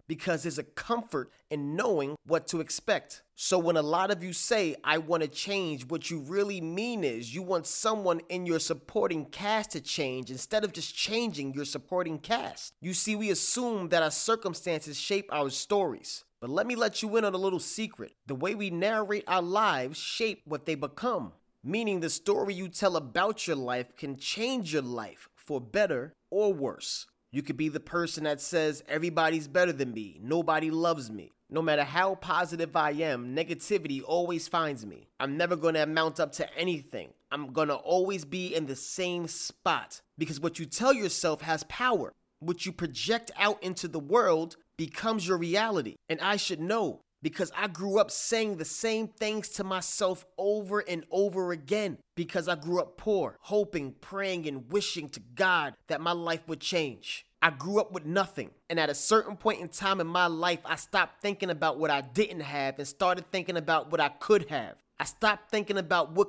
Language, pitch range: English, 155-200 Hz